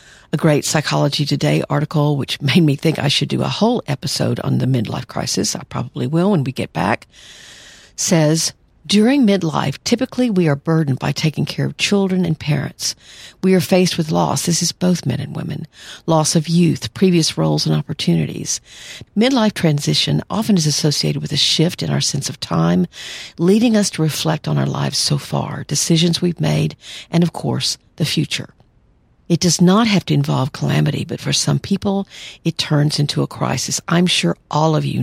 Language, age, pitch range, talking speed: English, 50-69, 140-175 Hz, 185 wpm